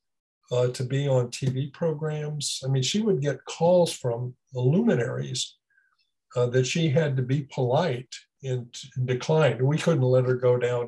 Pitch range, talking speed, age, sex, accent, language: 125-155 Hz, 170 wpm, 60-79, male, American, English